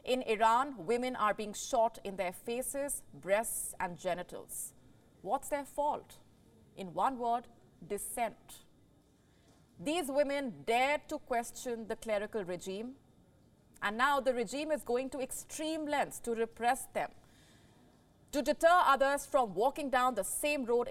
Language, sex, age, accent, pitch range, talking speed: English, female, 30-49, Indian, 205-275 Hz, 140 wpm